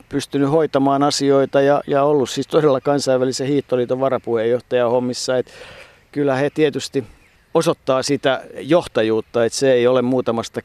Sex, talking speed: male, 130 wpm